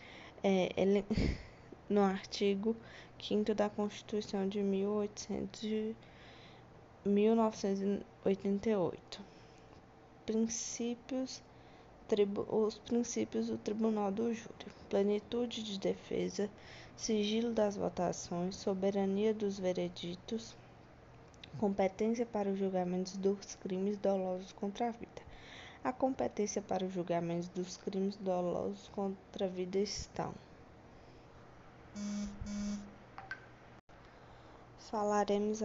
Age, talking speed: 10-29, 75 wpm